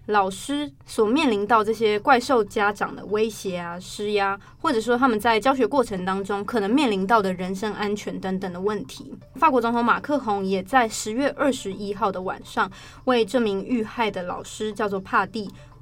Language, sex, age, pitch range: Chinese, female, 20-39, 200-245 Hz